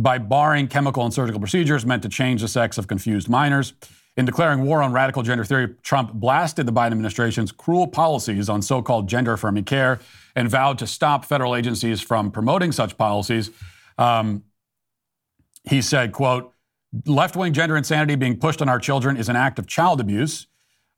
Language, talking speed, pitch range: English, 170 wpm, 110-140 Hz